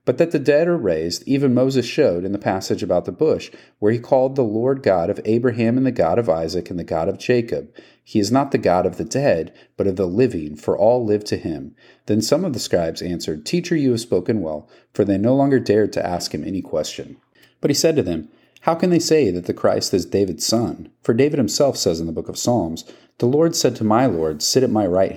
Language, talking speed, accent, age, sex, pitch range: English, 250 wpm, American, 40-59, male, 95-130 Hz